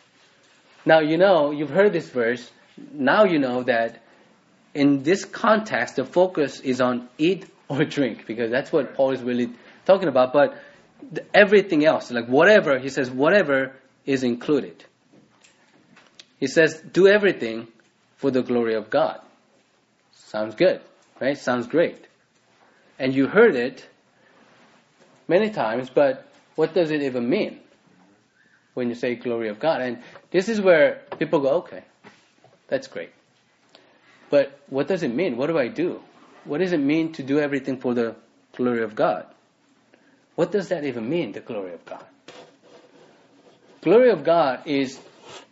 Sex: male